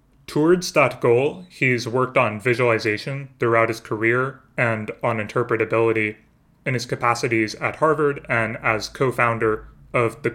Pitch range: 115-130 Hz